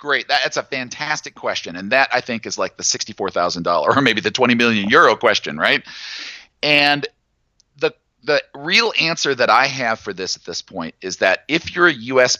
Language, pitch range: English, 110-150 Hz